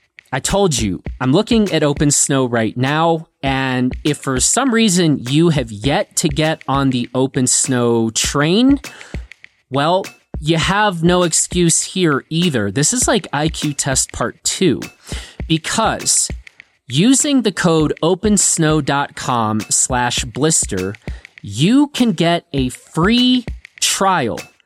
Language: English